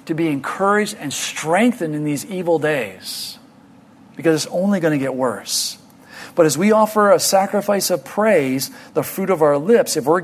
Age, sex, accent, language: 50-69, male, American, English